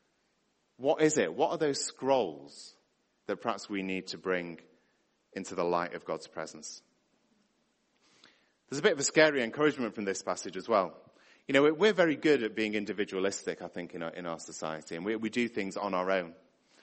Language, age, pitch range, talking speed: English, 30-49, 95-145 Hz, 195 wpm